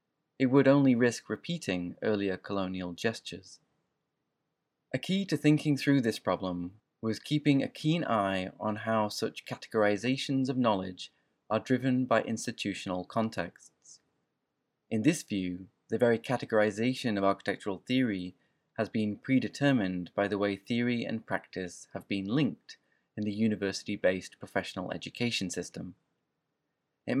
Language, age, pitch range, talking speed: English, 20-39, 95-130 Hz, 130 wpm